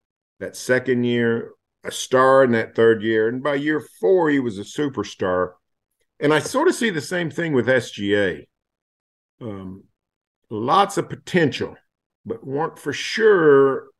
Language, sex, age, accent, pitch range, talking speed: English, male, 50-69, American, 105-140 Hz, 150 wpm